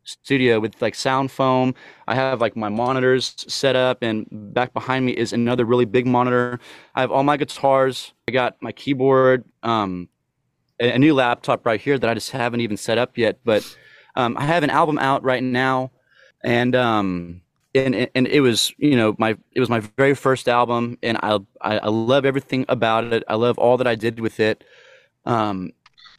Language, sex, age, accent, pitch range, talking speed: English, male, 30-49, American, 115-135 Hz, 195 wpm